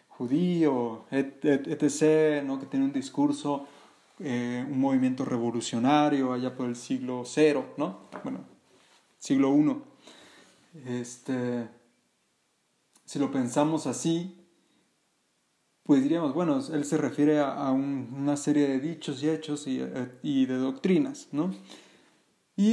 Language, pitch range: Spanish, 130-165 Hz